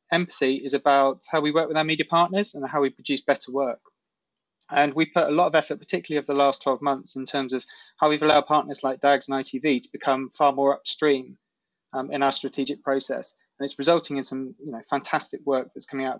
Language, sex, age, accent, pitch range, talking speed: English, male, 20-39, British, 130-155 Hz, 220 wpm